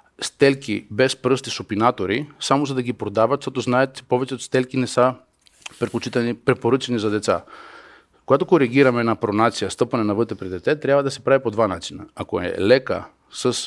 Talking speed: 170 wpm